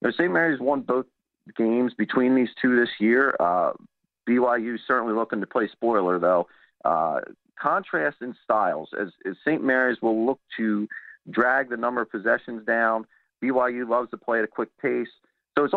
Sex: male